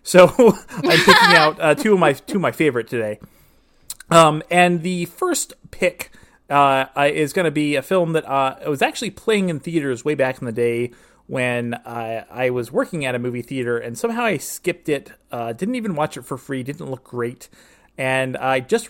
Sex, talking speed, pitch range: male, 205 wpm, 125-165 Hz